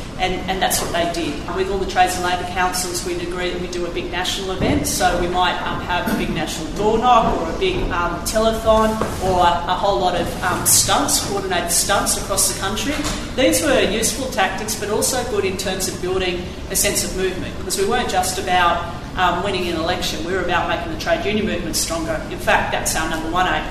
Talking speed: 225 wpm